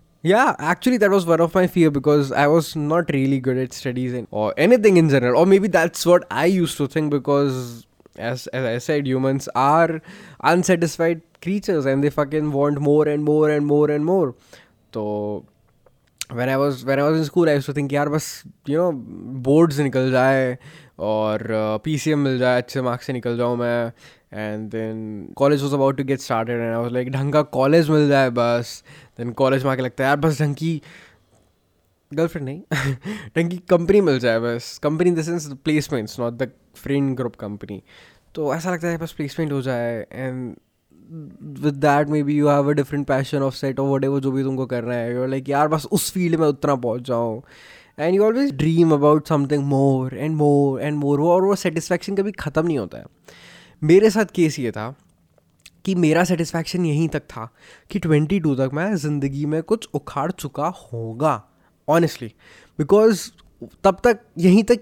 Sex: male